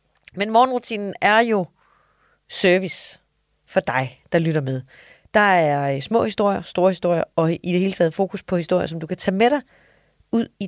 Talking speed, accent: 180 wpm, native